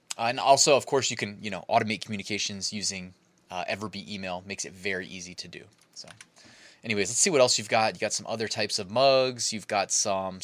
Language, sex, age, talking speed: English, male, 20-39, 225 wpm